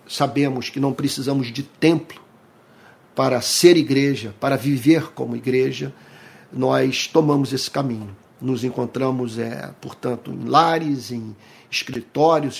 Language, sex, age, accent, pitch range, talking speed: Portuguese, male, 50-69, Brazilian, 130-155 Hz, 120 wpm